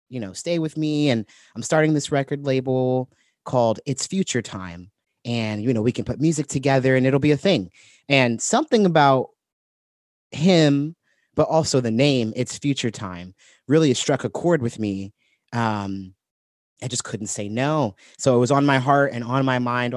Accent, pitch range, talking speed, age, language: American, 110-140 Hz, 185 wpm, 30-49, English